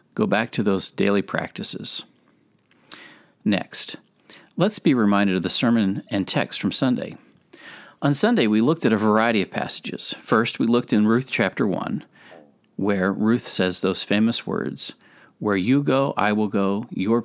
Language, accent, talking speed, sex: English, American, 160 wpm, male